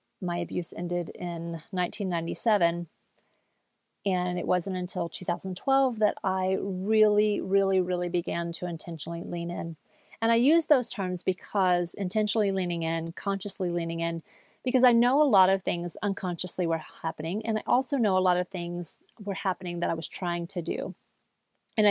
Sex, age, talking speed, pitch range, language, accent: female, 30-49, 160 wpm, 175-210 Hz, English, American